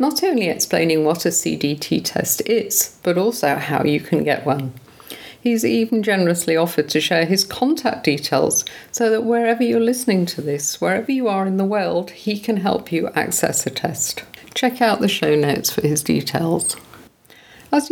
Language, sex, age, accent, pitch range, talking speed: English, female, 50-69, British, 170-230 Hz, 175 wpm